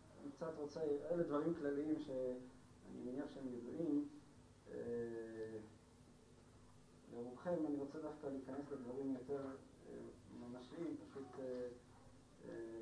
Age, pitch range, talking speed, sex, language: 40-59, 125-155 Hz, 105 wpm, male, Hebrew